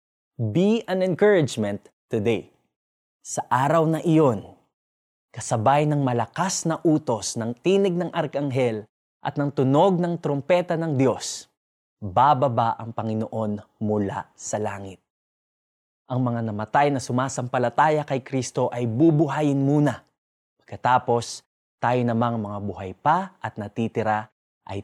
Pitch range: 110-150 Hz